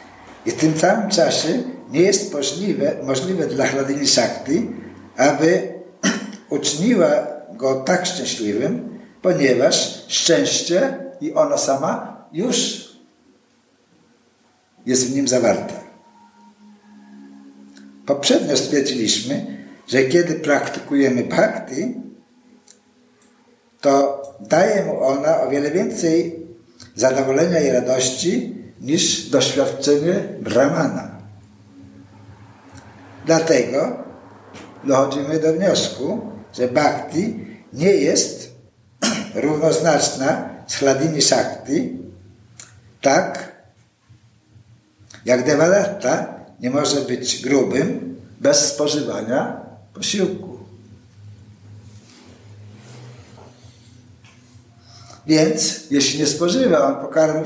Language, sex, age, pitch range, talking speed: Polish, male, 60-79, 110-170 Hz, 75 wpm